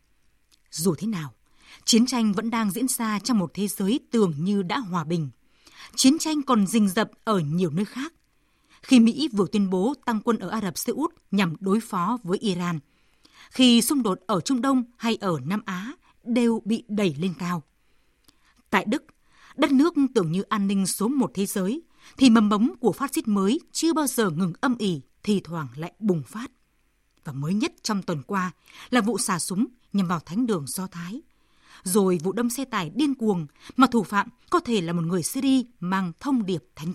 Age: 20-39